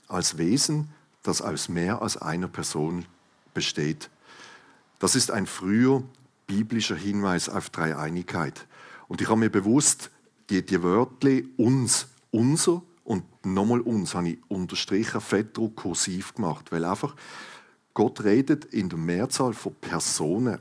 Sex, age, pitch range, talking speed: male, 50-69, 100-130 Hz, 130 wpm